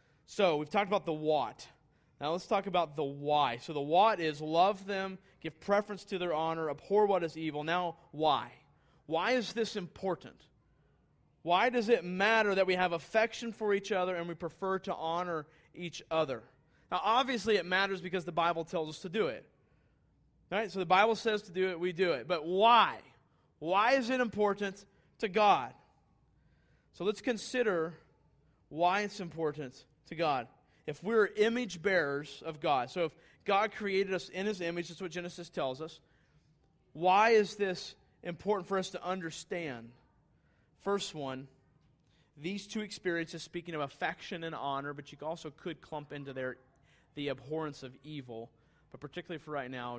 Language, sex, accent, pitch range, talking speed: English, male, American, 145-195 Hz, 175 wpm